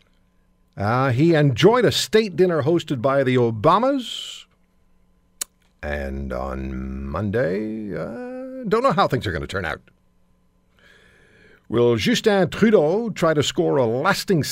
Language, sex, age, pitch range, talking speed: English, male, 60-79, 90-145 Hz, 130 wpm